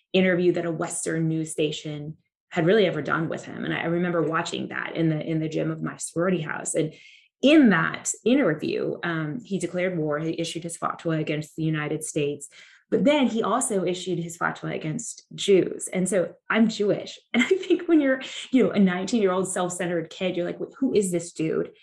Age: 20-39